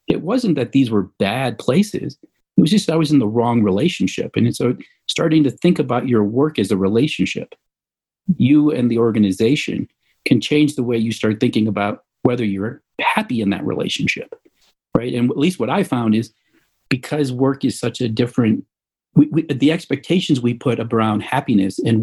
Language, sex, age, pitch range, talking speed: English, male, 50-69, 115-165 Hz, 185 wpm